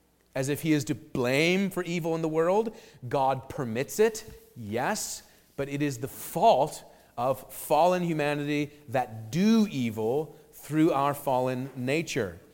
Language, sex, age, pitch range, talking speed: English, male, 40-59, 135-170 Hz, 145 wpm